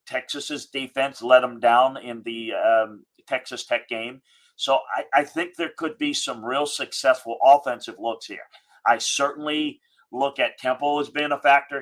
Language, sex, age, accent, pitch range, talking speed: English, male, 40-59, American, 125-170 Hz, 170 wpm